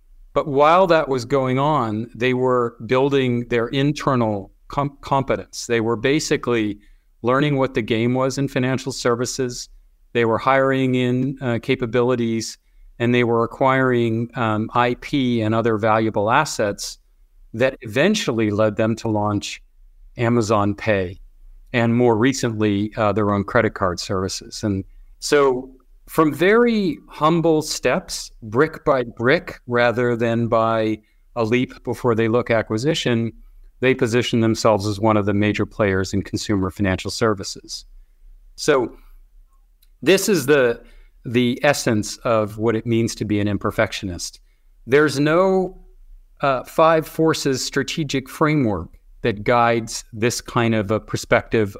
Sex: male